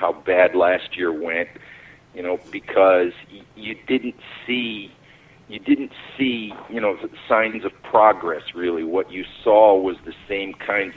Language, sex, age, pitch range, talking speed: English, male, 40-59, 95-140 Hz, 155 wpm